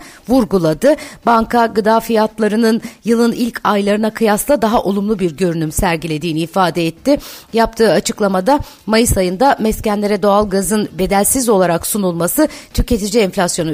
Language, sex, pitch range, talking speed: Turkish, female, 190-245 Hz, 120 wpm